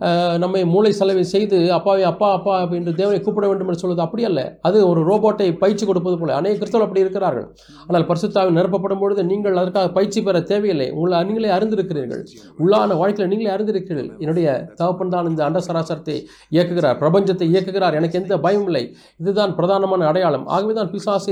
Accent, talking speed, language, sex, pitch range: native, 155 wpm, Tamil, male, 165-200 Hz